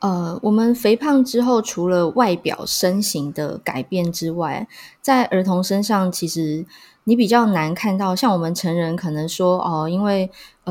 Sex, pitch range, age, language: female, 170-215 Hz, 20-39, Chinese